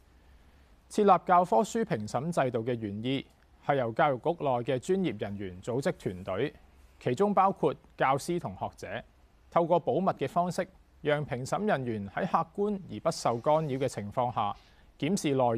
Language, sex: Chinese, male